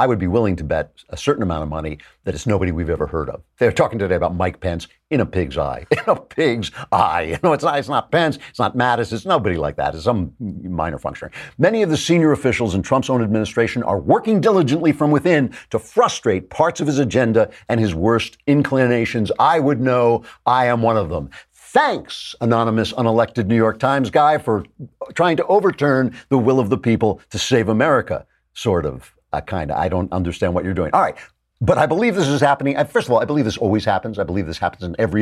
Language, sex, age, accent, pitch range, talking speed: English, male, 50-69, American, 90-125 Hz, 230 wpm